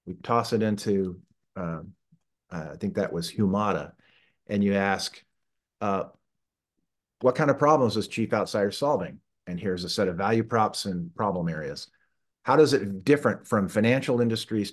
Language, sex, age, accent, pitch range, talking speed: English, male, 50-69, American, 95-115 Hz, 165 wpm